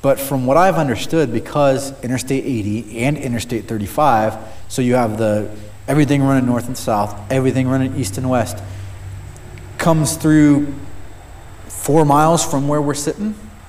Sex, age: male, 30-49